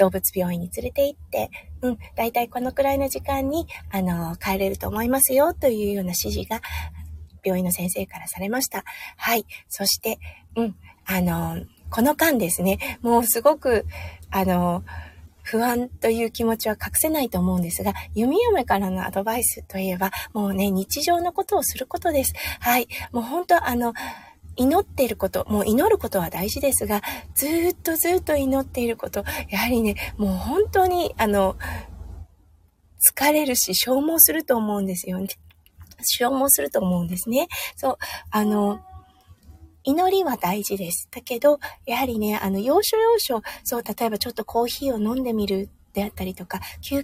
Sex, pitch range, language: female, 185-270 Hz, Japanese